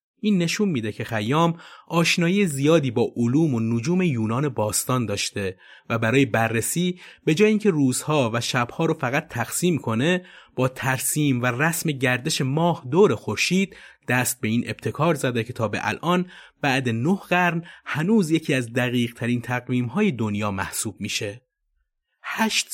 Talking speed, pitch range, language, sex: 155 wpm, 115-170 Hz, Persian, male